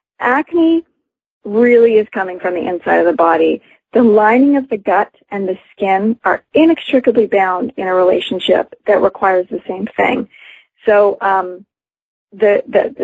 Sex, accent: female, American